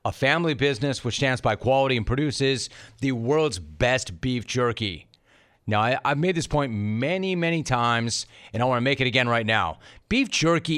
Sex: male